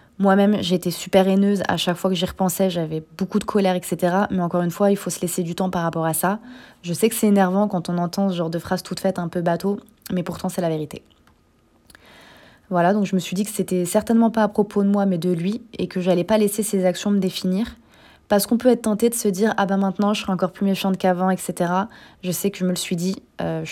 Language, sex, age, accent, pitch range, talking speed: French, female, 20-39, French, 180-200 Hz, 270 wpm